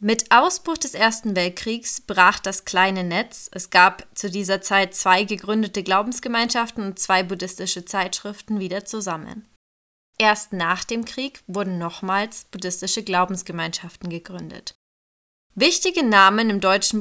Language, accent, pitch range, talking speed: German, German, 185-230 Hz, 125 wpm